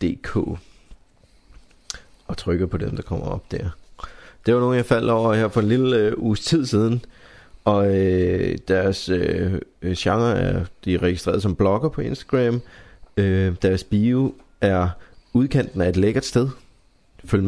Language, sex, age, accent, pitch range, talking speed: Danish, male, 30-49, native, 95-120 Hz, 160 wpm